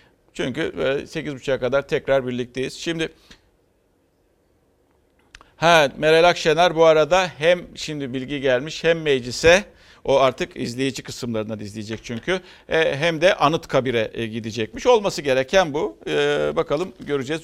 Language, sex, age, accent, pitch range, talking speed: Turkish, male, 50-69, native, 120-155 Hz, 115 wpm